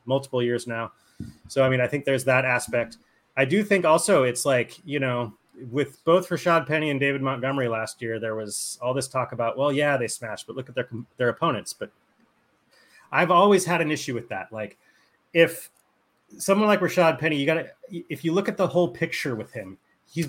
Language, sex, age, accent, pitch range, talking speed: English, male, 30-49, American, 120-165 Hz, 205 wpm